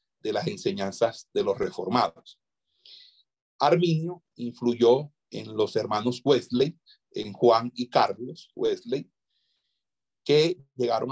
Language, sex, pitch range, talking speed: Spanish, male, 120-175 Hz, 105 wpm